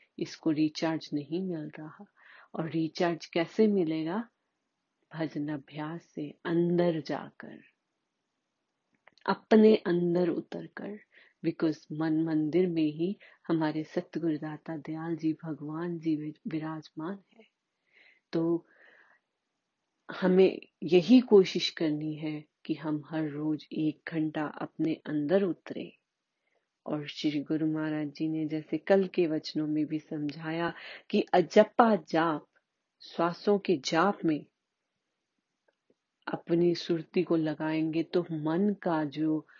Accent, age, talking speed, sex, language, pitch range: native, 30-49, 110 wpm, female, Hindi, 155-180 Hz